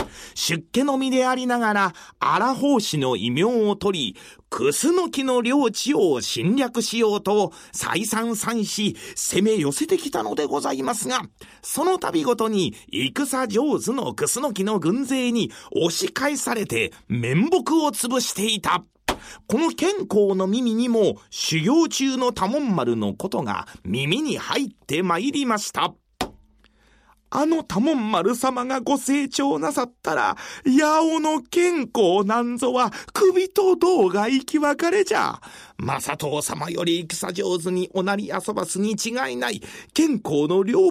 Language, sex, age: Japanese, male, 40-59